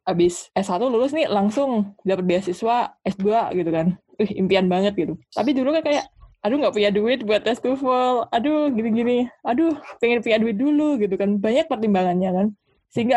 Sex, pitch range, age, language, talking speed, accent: female, 190-245 Hz, 20-39, Indonesian, 180 wpm, native